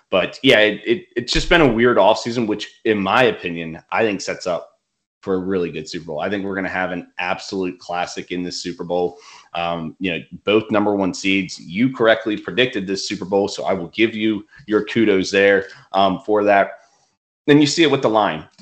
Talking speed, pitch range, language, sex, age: 215 wpm, 95-105 Hz, English, male, 30-49